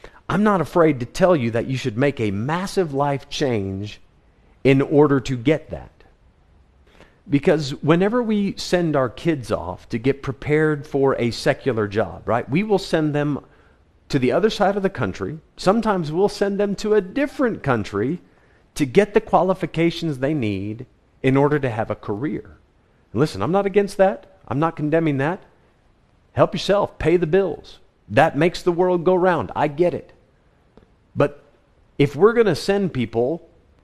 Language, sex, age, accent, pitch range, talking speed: English, male, 50-69, American, 110-175 Hz, 170 wpm